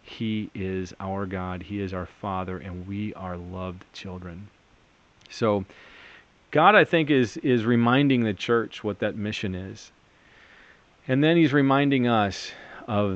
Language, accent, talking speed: English, American, 145 wpm